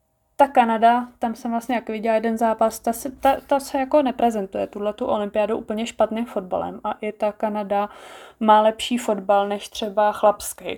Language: Czech